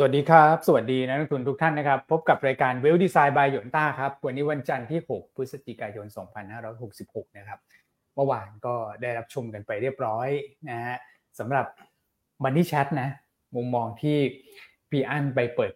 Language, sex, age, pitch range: Thai, male, 20-39, 115-150 Hz